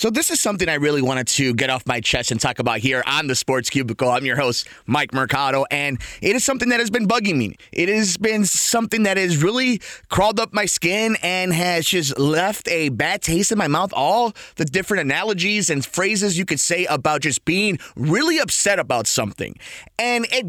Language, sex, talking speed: English, male, 215 wpm